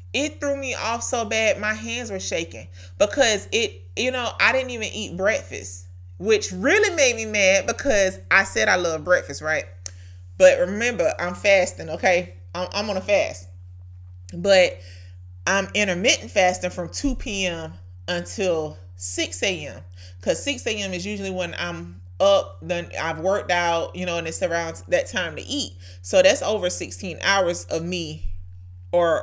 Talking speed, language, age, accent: 160 wpm, English, 30-49, American